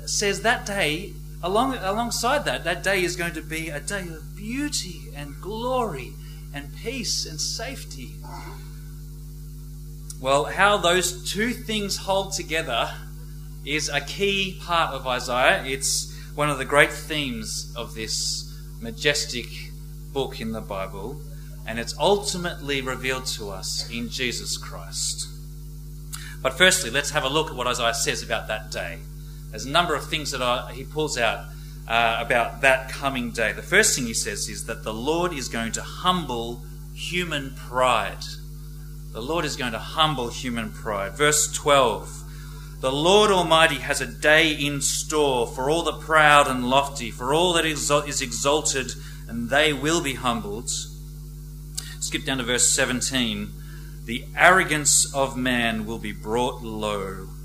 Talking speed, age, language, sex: 150 wpm, 30-49, English, male